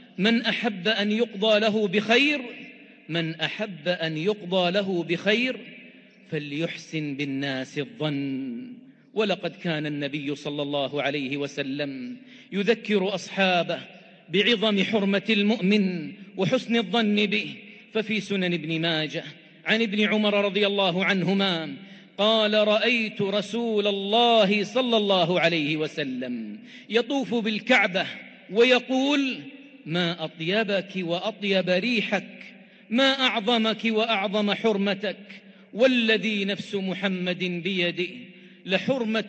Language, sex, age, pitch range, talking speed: English, male, 40-59, 170-225 Hz, 100 wpm